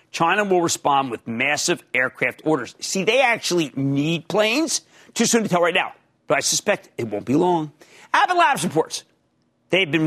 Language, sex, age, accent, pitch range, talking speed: English, male, 50-69, American, 145-200 Hz, 180 wpm